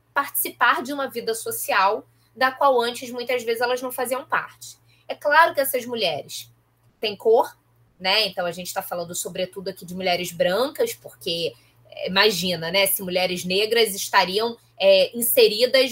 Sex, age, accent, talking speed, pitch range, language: female, 20-39, Brazilian, 150 wpm, 185-270 Hz, Portuguese